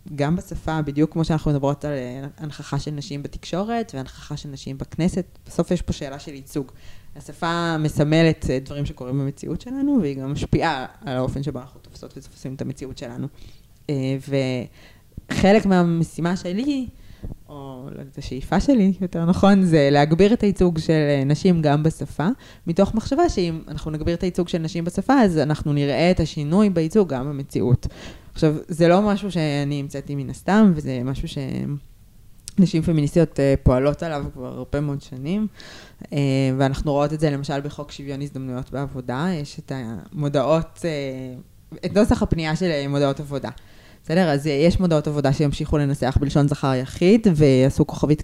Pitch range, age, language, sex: 135-170 Hz, 20-39, Hebrew, female